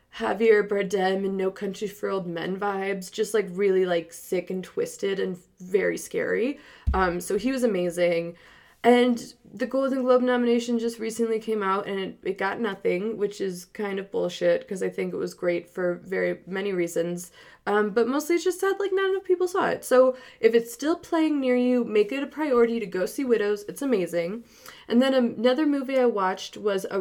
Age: 20-39